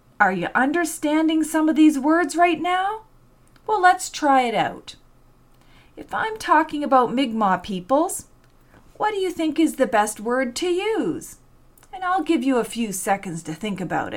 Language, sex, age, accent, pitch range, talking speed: English, female, 40-59, American, 225-340 Hz, 170 wpm